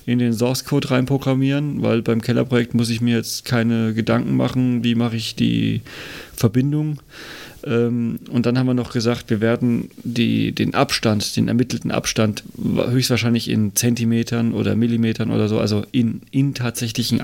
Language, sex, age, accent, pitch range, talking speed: German, male, 40-59, German, 110-125 Hz, 155 wpm